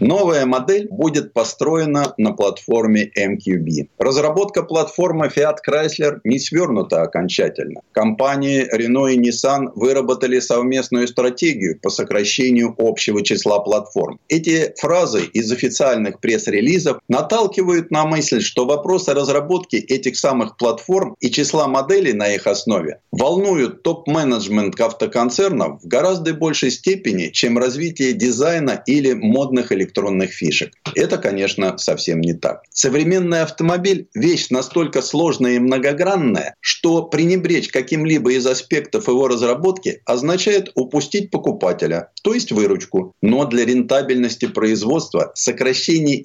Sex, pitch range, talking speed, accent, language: male, 125-170 Hz, 115 wpm, native, Russian